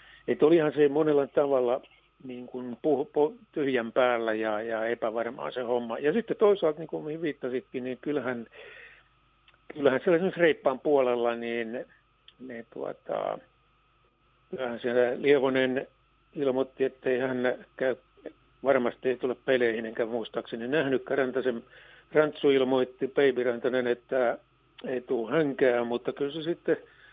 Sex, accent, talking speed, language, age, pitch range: male, native, 125 wpm, Finnish, 60-79, 125-160 Hz